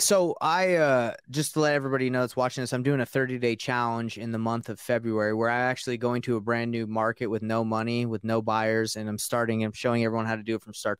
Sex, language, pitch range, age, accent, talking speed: male, English, 115-130 Hz, 20-39, American, 265 wpm